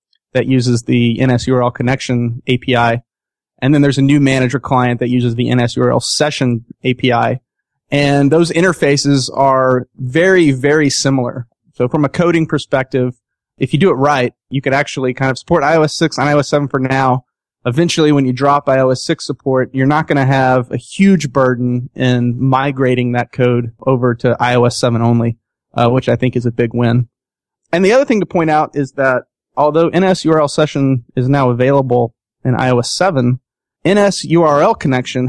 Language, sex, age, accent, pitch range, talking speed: English, male, 30-49, American, 125-145 Hz, 170 wpm